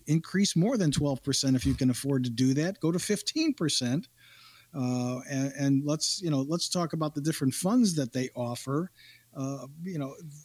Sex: male